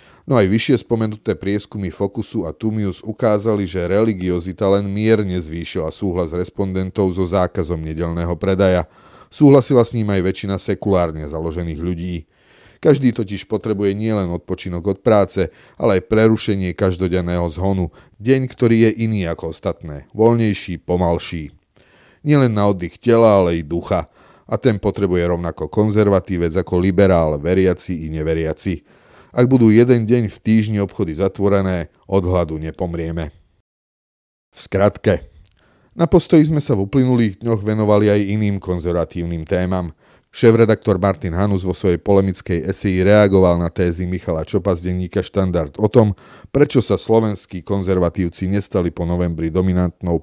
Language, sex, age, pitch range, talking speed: Slovak, male, 30-49, 90-105 Hz, 135 wpm